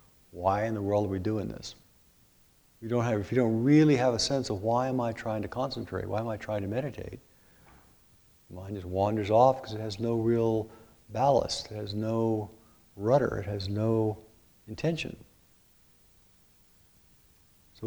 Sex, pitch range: male, 105-125 Hz